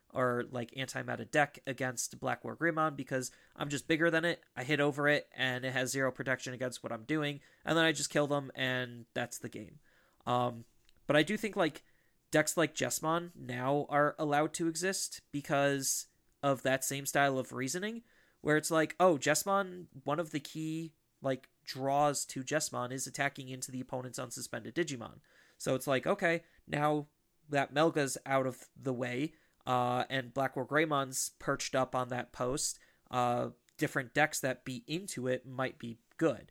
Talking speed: 180 wpm